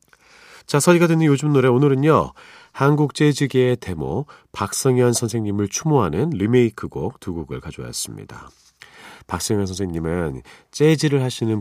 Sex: male